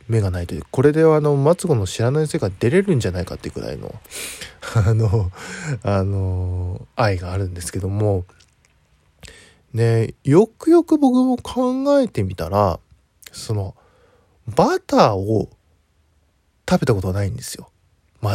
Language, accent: Japanese, native